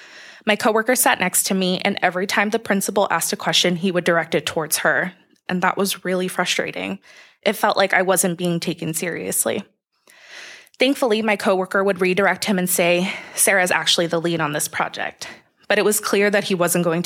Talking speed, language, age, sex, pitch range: 195 wpm, English, 20-39, female, 175-210 Hz